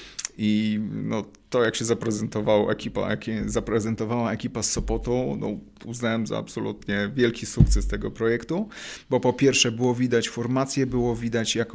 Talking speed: 155 wpm